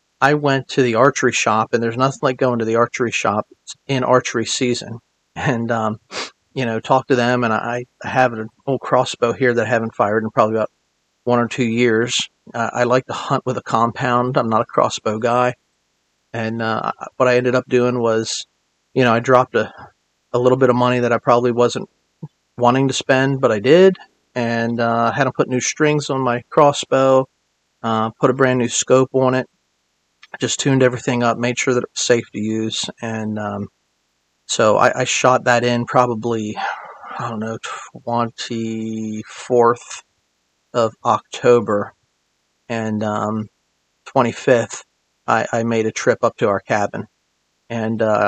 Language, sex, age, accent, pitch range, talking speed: English, male, 40-59, American, 110-130 Hz, 180 wpm